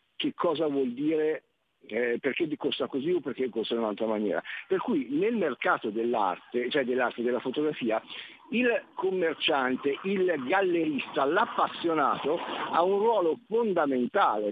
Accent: native